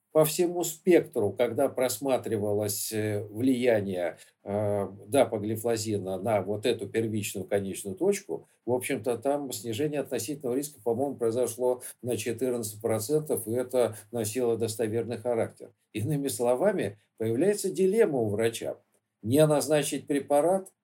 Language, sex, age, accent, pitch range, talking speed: Russian, male, 50-69, native, 115-150 Hz, 110 wpm